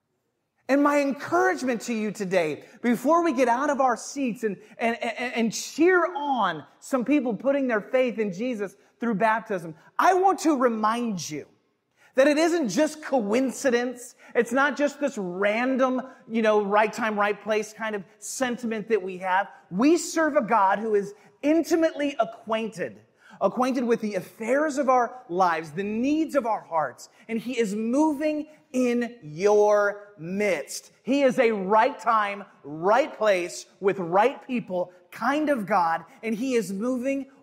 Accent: American